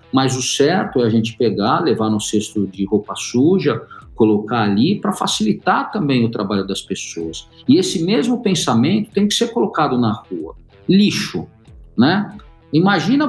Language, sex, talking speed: Portuguese, male, 160 wpm